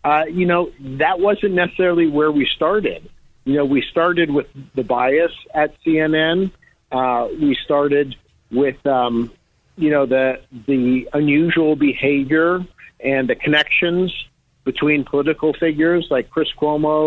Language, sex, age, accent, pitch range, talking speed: English, male, 50-69, American, 130-155 Hz, 135 wpm